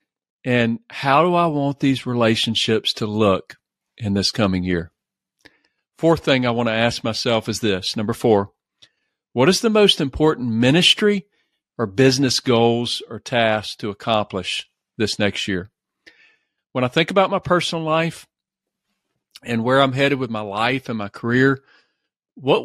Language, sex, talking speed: English, male, 155 wpm